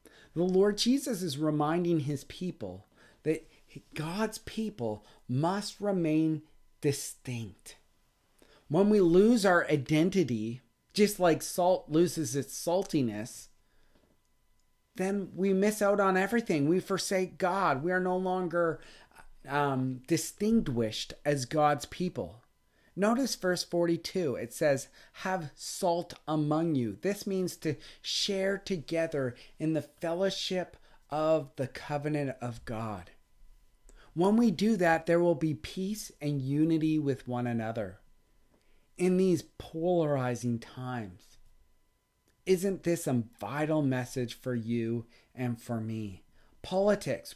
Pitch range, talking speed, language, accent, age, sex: 125-185 Hz, 115 wpm, English, American, 30-49, male